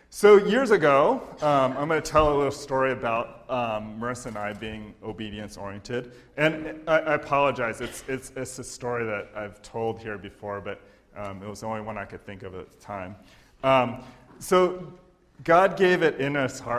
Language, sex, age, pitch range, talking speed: English, male, 30-49, 105-140 Hz, 190 wpm